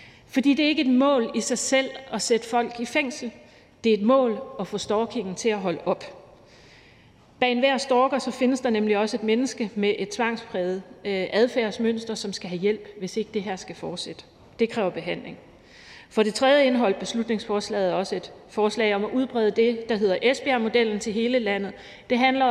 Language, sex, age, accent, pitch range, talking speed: Danish, female, 40-59, native, 200-245 Hz, 190 wpm